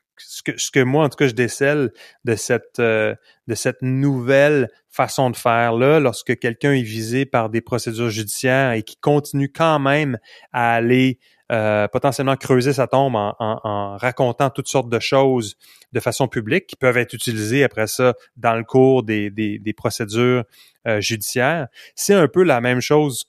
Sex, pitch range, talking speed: male, 110-135 Hz, 185 wpm